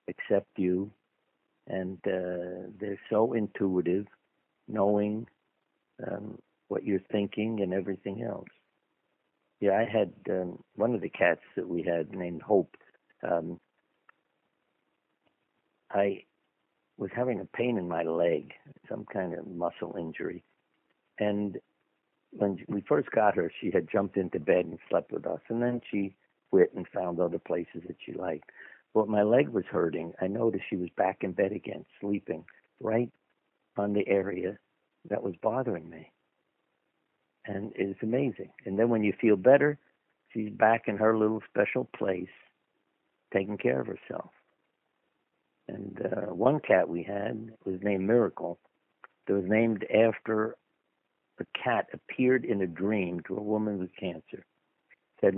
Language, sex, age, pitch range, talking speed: English, male, 60-79, 95-110 Hz, 145 wpm